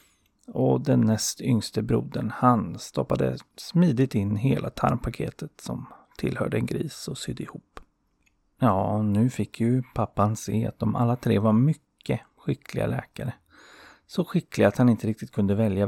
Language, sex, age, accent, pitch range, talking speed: Swedish, male, 30-49, native, 100-125 Hz, 150 wpm